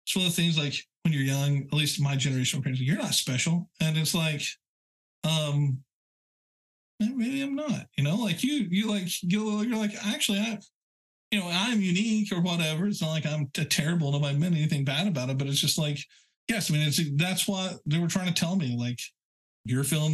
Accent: American